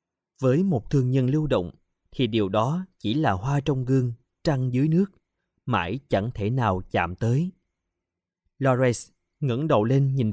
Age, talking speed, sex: 20-39, 165 wpm, male